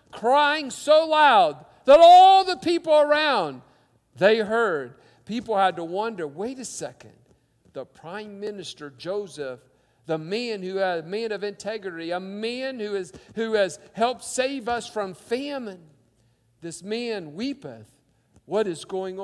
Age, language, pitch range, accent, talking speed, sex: 50-69, English, 200-290 Hz, American, 145 wpm, male